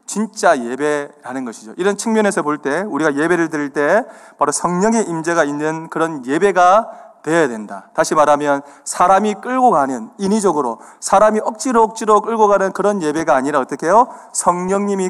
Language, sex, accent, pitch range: Korean, male, native, 145-205 Hz